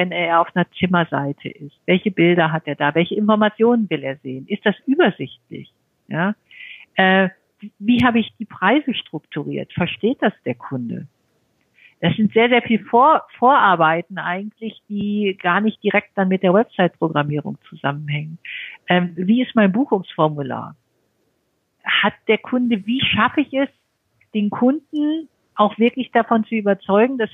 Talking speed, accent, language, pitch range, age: 150 wpm, German, German, 175-220 Hz, 50-69